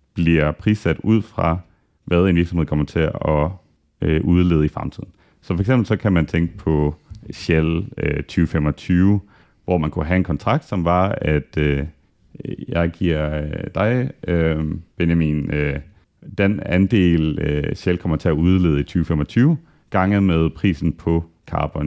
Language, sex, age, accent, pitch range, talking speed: Danish, male, 30-49, native, 75-95 Hz, 135 wpm